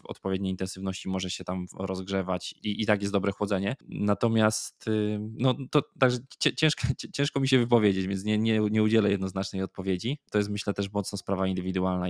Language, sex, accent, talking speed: Polish, male, native, 175 wpm